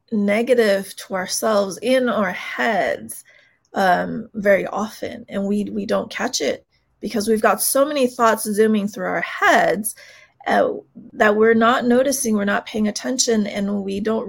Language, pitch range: English, 200-240 Hz